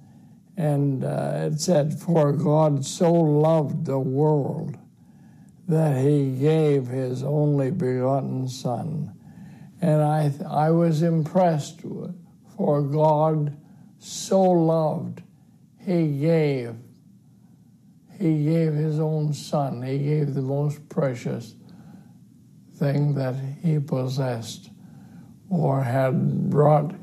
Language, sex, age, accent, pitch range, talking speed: English, male, 60-79, American, 145-175 Hz, 100 wpm